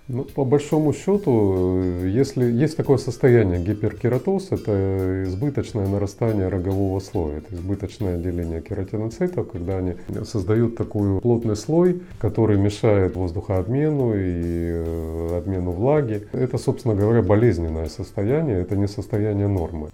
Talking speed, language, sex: 115 wpm, Russian, male